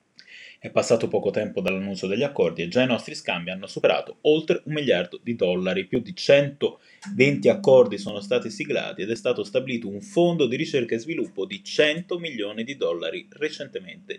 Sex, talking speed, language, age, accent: male, 180 wpm, Italian, 20-39, native